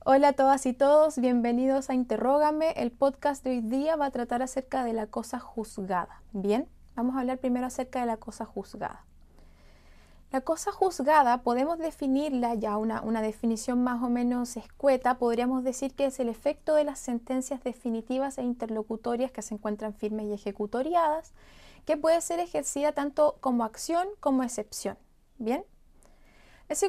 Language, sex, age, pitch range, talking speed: Spanish, female, 20-39, 225-285 Hz, 165 wpm